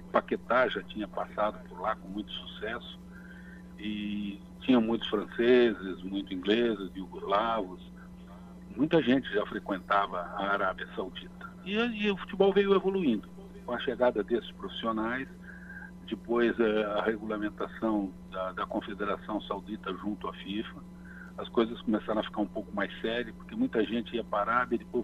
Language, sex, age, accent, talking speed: Portuguese, male, 60-79, Brazilian, 145 wpm